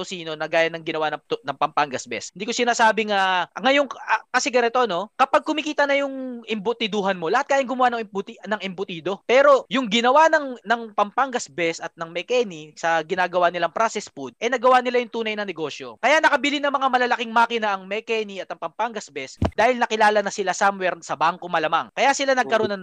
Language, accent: Filipino, native